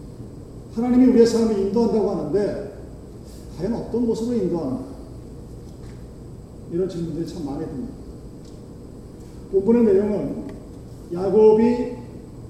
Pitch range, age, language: 175-225 Hz, 40-59, Korean